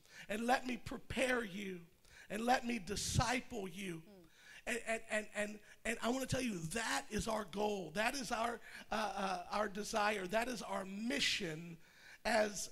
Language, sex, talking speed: English, male, 170 wpm